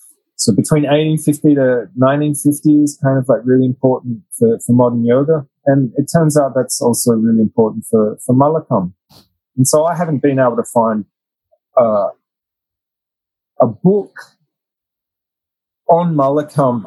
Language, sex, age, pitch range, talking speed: English, male, 30-49, 120-160 Hz, 140 wpm